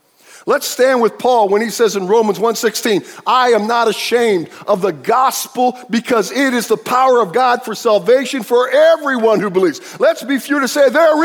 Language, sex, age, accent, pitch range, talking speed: English, male, 50-69, American, 190-265 Hz, 190 wpm